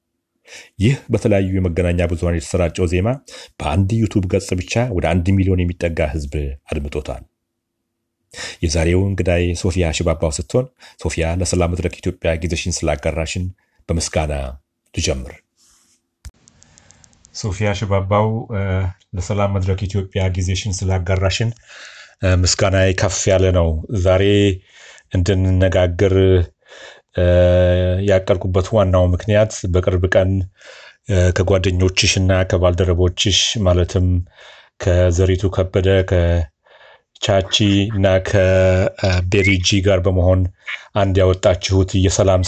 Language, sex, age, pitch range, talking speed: Amharic, male, 40-59, 90-100 Hz, 80 wpm